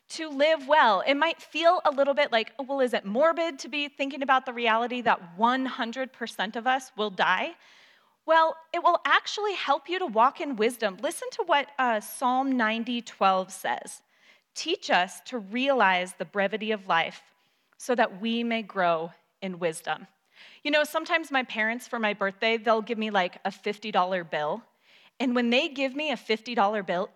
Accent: American